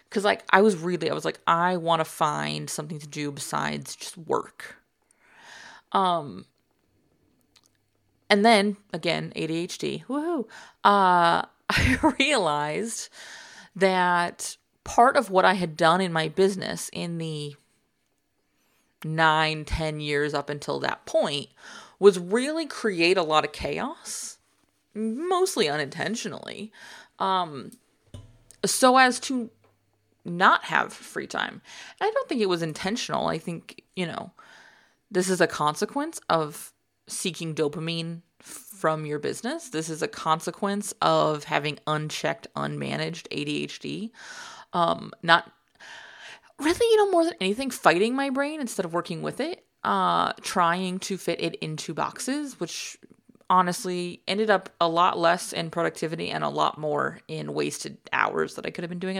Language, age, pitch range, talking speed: English, 30-49, 155-225 Hz, 140 wpm